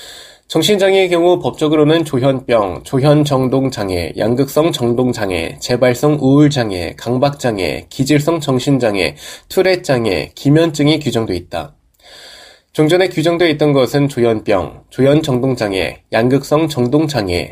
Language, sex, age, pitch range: Korean, male, 20-39, 120-155 Hz